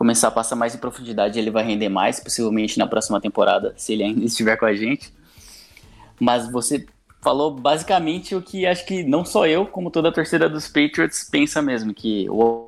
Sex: male